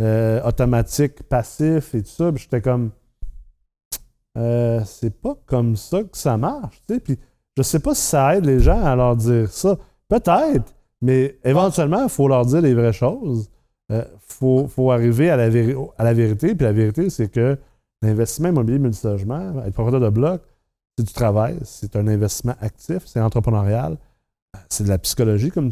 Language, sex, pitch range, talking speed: French, male, 115-140 Hz, 185 wpm